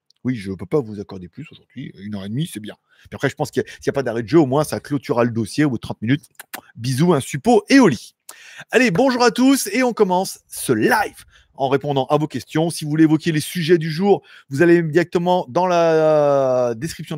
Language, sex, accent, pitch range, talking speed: French, male, French, 125-180 Hz, 250 wpm